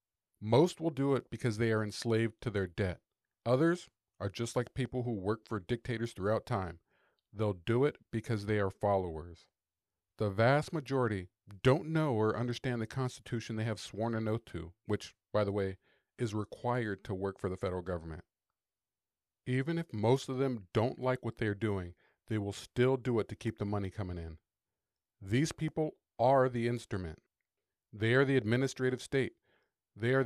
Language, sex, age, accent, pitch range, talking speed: English, male, 40-59, American, 105-130 Hz, 180 wpm